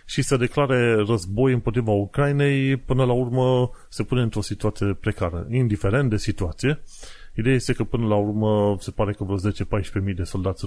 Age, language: 30-49, Romanian